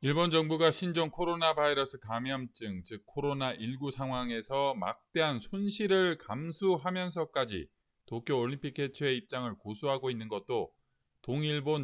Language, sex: Korean, male